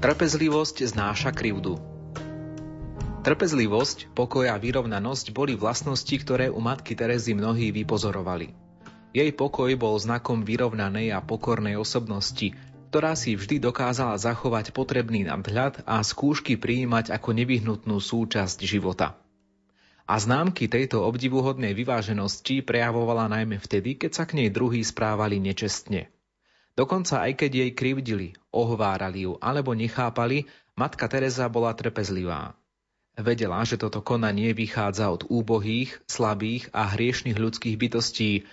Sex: male